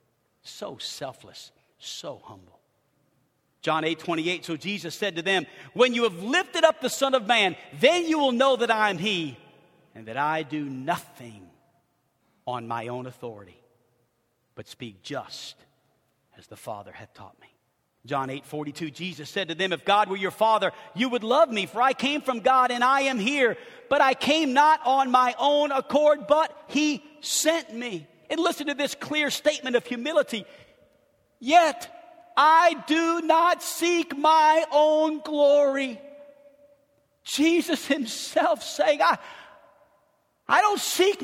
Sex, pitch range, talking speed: male, 190-290 Hz, 155 wpm